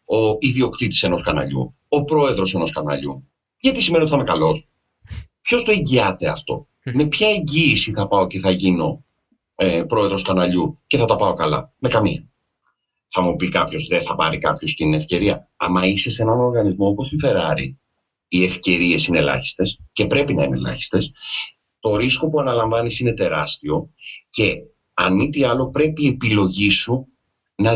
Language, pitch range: Greek, 95-155 Hz